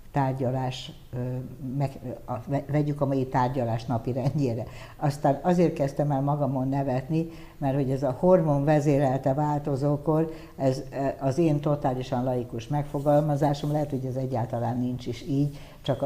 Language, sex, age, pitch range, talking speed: Hungarian, female, 60-79, 125-145 Hz, 125 wpm